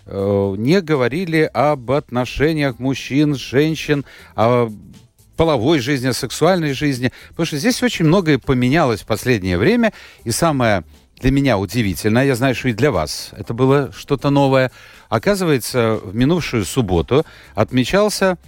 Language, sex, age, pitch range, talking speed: Russian, male, 60-79, 110-155 Hz, 135 wpm